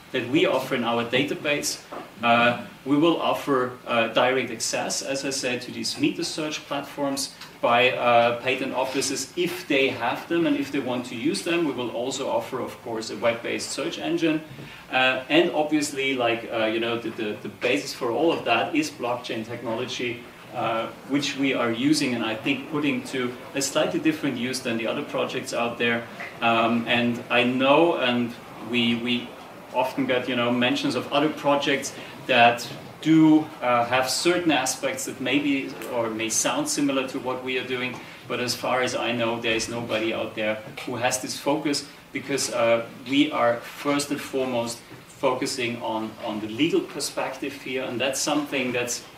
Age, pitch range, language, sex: 30-49, 120-150 Hz, English, male